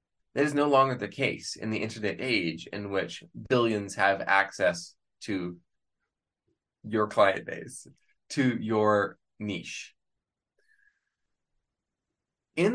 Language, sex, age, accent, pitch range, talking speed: English, male, 20-39, American, 105-150 Hz, 110 wpm